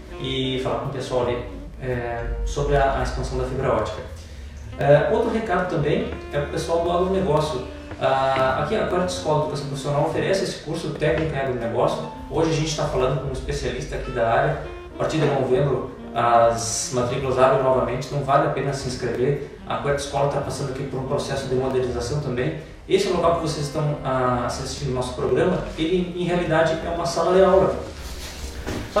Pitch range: 130-175 Hz